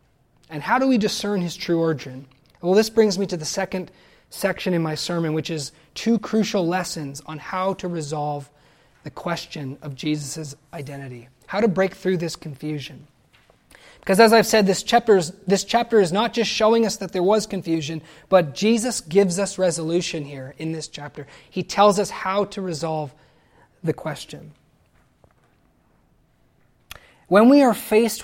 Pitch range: 150-205 Hz